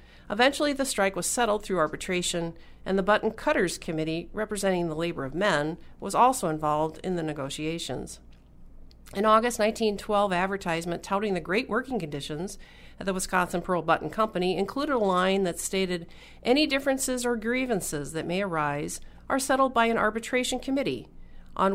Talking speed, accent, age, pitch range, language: 155 wpm, American, 50-69, 160-215 Hz, English